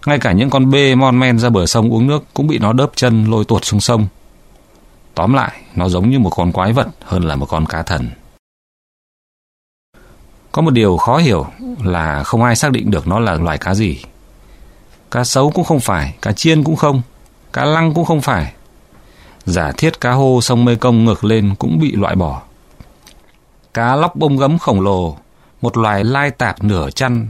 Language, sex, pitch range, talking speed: Vietnamese, male, 90-125 Hz, 200 wpm